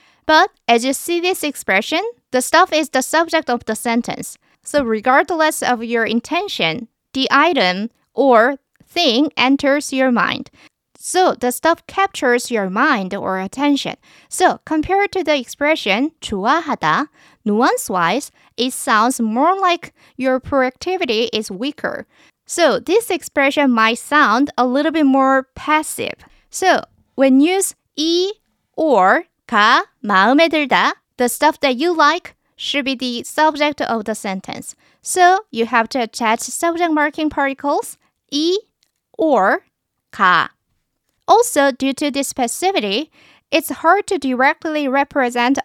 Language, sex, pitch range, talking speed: English, female, 245-315 Hz, 130 wpm